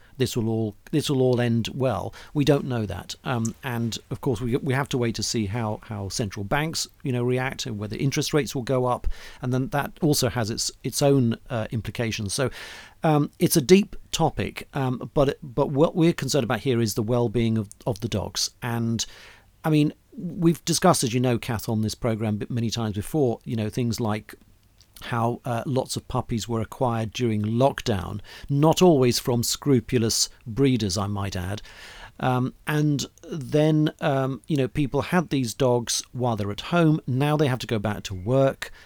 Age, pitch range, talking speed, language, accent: 40-59, 110-145 Hz, 195 wpm, English, British